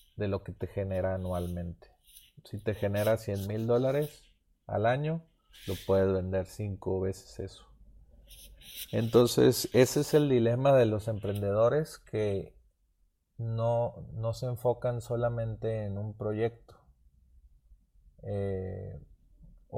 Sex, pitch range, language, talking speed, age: male, 95-115 Hz, Spanish, 115 wpm, 30-49